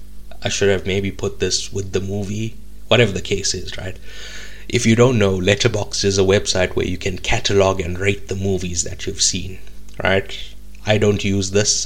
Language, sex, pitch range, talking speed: English, male, 95-105 Hz, 190 wpm